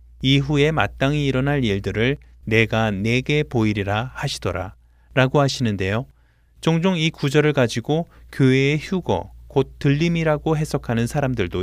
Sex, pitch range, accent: male, 100-150 Hz, native